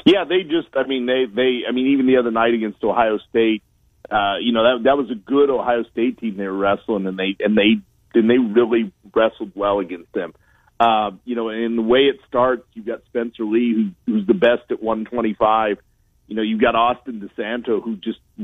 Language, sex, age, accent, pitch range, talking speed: English, male, 40-59, American, 110-130 Hz, 220 wpm